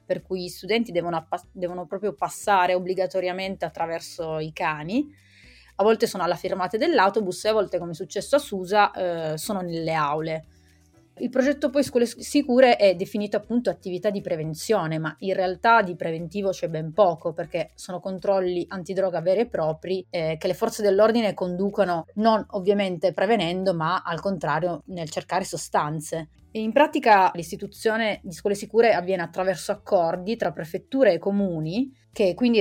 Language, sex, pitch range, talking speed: Italian, female, 170-205 Hz, 160 wpm